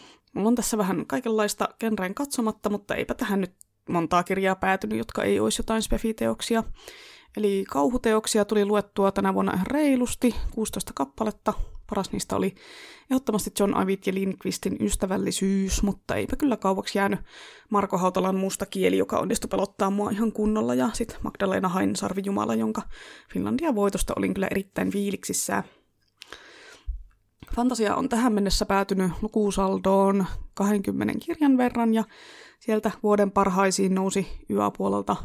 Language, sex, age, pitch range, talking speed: Finnish, female, 20-39, 190-220 Hz, 135 wpm